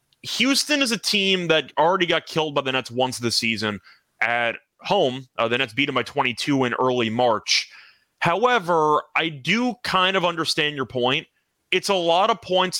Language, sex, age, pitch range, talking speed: English, male, 30-49, 125-175 Hz, 185 wpm